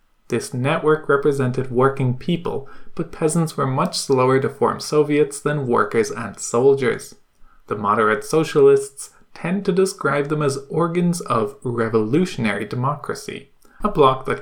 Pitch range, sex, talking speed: 130-180 Hz, male, 135 wpm